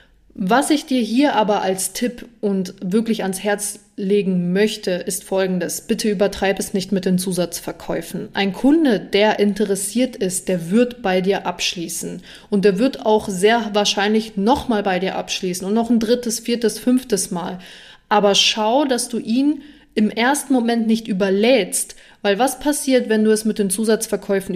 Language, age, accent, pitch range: German, 20-39, German, 195-240 Hz